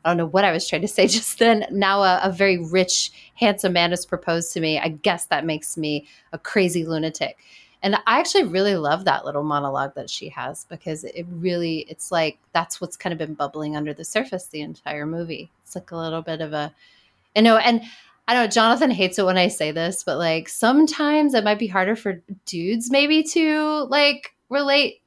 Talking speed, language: 220 wpm, English